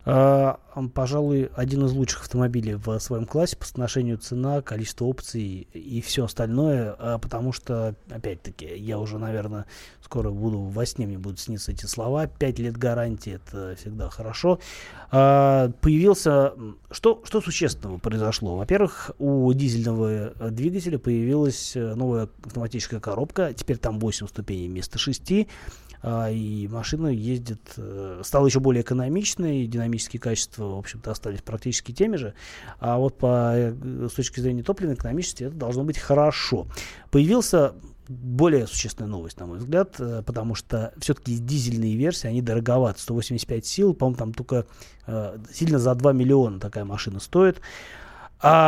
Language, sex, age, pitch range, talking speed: Russian, male, 20-39, 110-140 Hz, 145 wpm